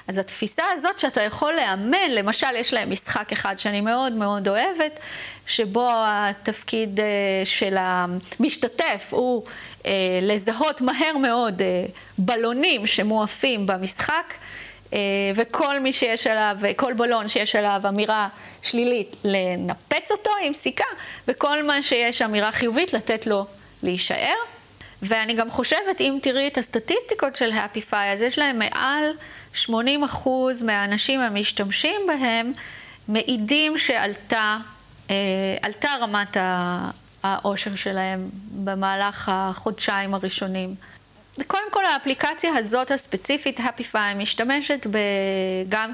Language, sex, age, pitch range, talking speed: Hebrew, female, 30-49, 200-275 Hz, 105 wpm